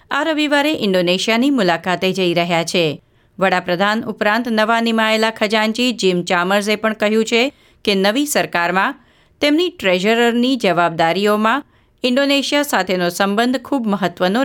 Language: Gujarati